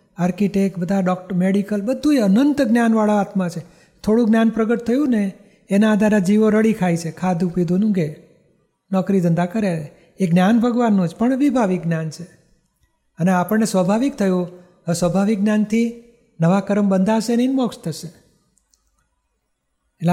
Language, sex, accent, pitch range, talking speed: Gujarati, male, native, 185-215 Hz, 145 wpm